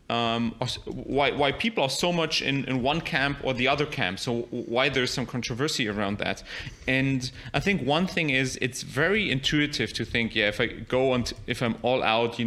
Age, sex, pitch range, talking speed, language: 30-49, male, 120-160 Hz, 205 wpm, English